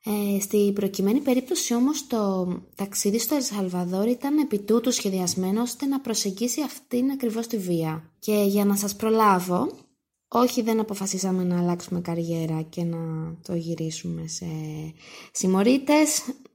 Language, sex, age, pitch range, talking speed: Greek, female, 20-39, 185-245 Hz, 130 wpm